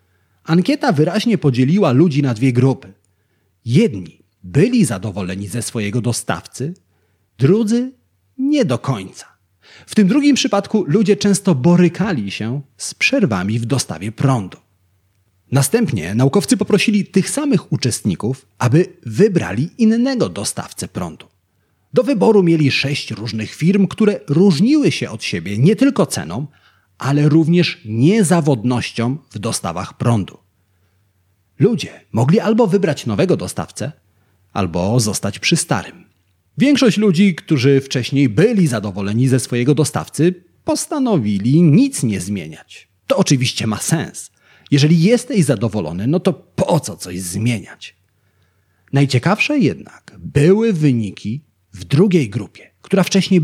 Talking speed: 120 wpm